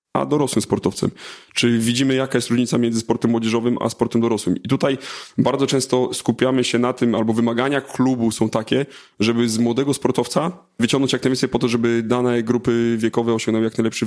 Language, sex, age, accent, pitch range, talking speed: Polish, male, 30-49, native, 115-135 Hz, 185 wpm